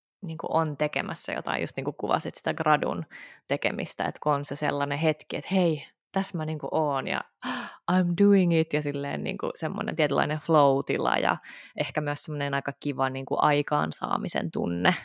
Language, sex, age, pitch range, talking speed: Finnish, female, 20-39, 145-180 Hz, 160 wpm